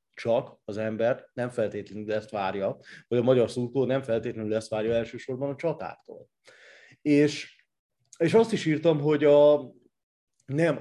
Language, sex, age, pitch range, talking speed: Hungarian, male, 30-49, 110-140 Hz, 145 wpm